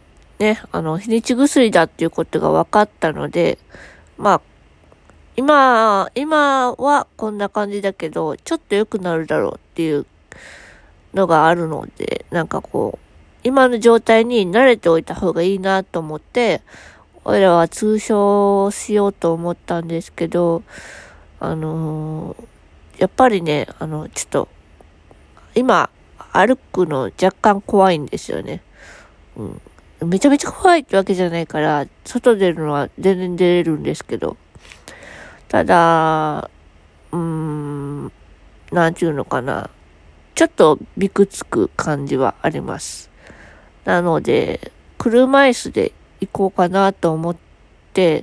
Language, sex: Japanese, female